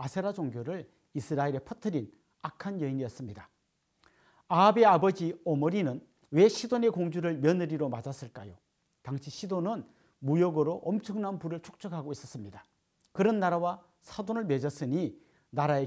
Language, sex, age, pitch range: Korean, male, 40-59, 140-180 Hz